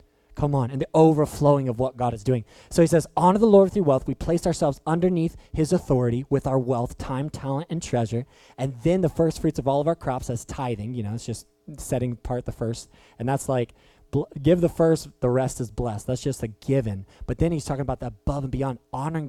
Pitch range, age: 120-155 Hz, 20-39